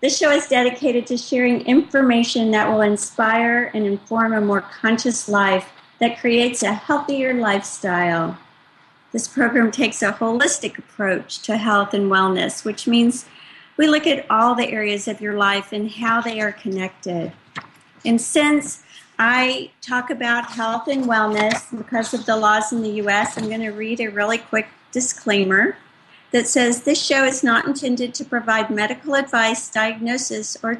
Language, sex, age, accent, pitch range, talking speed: English, female, 50-69, American, 215-255 Hz, 160 wpm